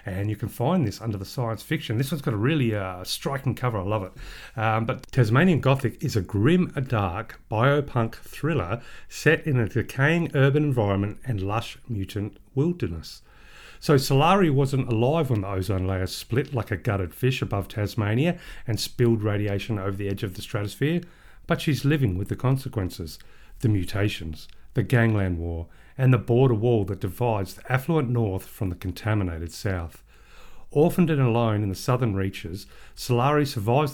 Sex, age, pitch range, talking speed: male, 40-59, 100-135 Hz, 175 wpm